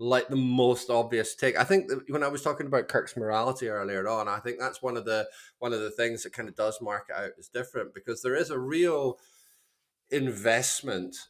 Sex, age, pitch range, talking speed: male, 30-49, 100-140 Hz, 225 wpm